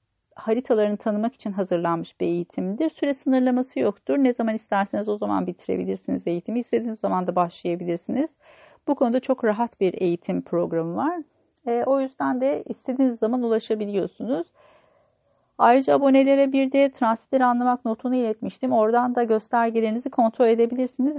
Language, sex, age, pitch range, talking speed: Turkish, female, 40-59, 205-260 Hz, 135 wpm